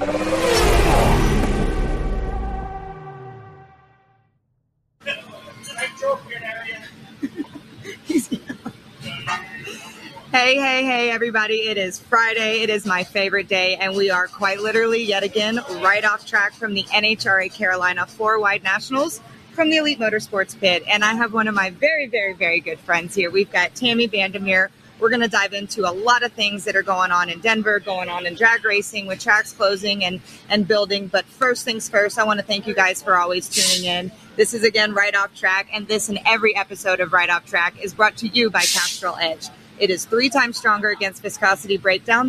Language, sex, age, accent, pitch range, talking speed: English, female, 30-49, American, 190-225 Hz, 170 wpm